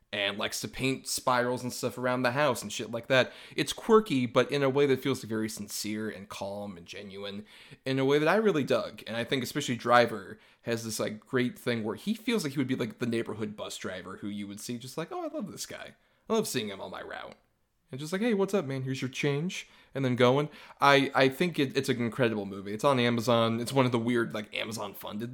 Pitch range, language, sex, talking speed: 115-140 Hz, English, male, 250 wpm